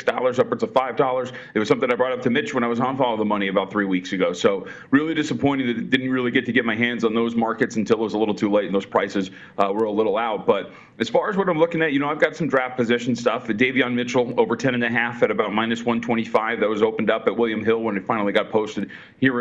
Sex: male